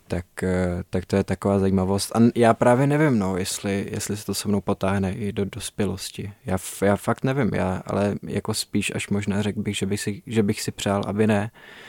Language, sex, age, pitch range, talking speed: Czech, male, 20-39, 95-105 Hz, 210 wpm